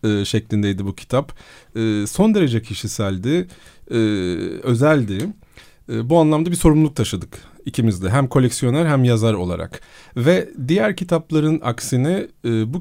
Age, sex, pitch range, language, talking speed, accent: 40-59, male, 110-165 Hz, Turkish, 110 wpm, native